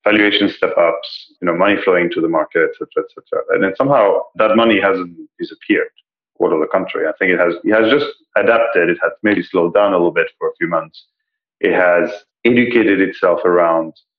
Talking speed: 210 wpm